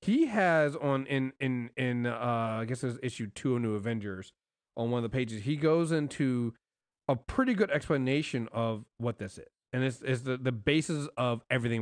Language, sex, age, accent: English, male, 30-49, American